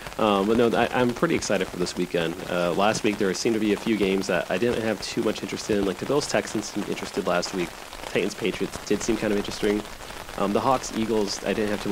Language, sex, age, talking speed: English, male, 30-49, 255 wpm